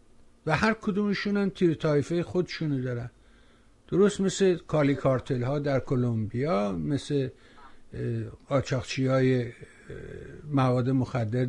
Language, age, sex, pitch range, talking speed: Persian, 60-79, male, 125-160 Hz, 100 wpm